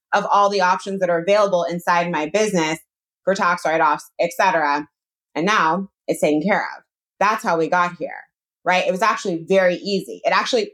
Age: 20-39